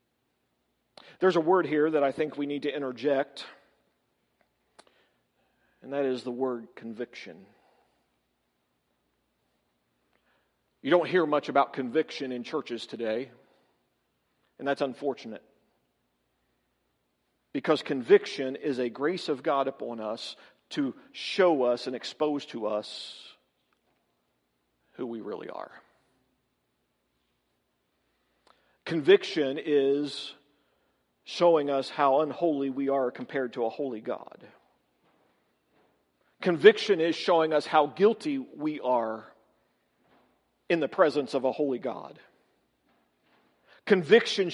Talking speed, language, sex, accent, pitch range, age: 105 wpm, English, male, American, 120-170 Hz, 50-69